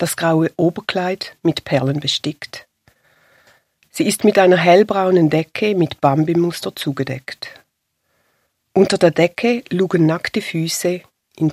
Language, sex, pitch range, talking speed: German, female, 150-190 Hz, 115 wpm